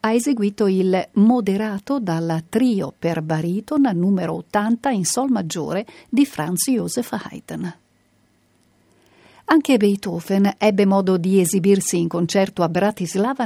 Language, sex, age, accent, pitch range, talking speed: Italian, female, 50-69, native, 175-235 Hz, 120 wpm